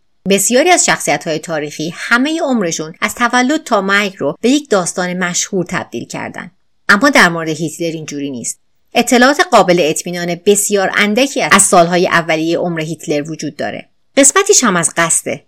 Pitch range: 165-240 Hz